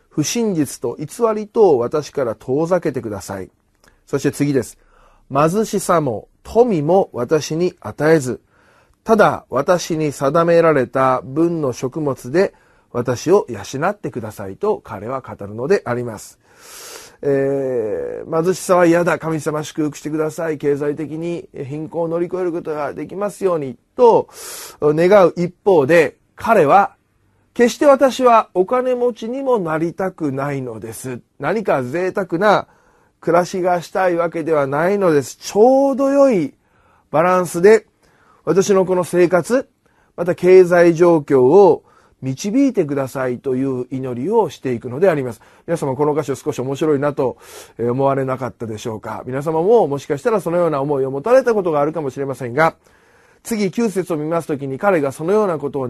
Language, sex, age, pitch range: Japanese, male, 30-49, 135-205 Hz